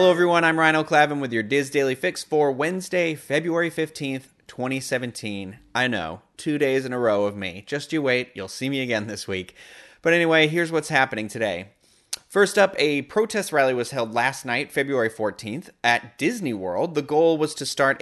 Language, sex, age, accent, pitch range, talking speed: English, male, 30-49, American, 115-155 Hz, 195 wpm